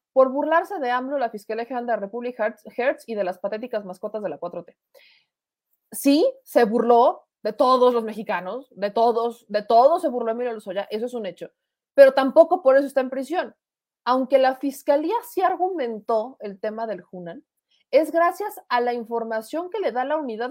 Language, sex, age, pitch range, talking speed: Spanish, female, 30-49, 220-280 Hz, 190 wpm